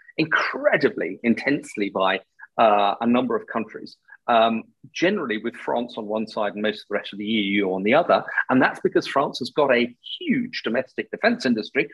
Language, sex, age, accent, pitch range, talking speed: English, male, 40-59, British, 115-190 Hz, 185 wpm